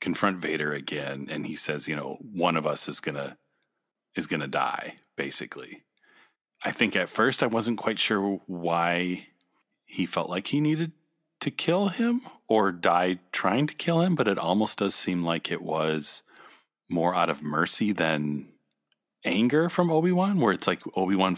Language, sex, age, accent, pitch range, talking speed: English, male, 40-59, American, 80-140 Hz, 170 wpm